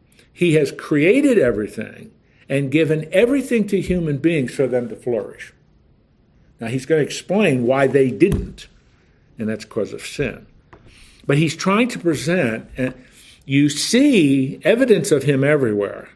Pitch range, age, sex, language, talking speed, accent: 140-195 Hz, 60-79, male, English, 140 wpm, American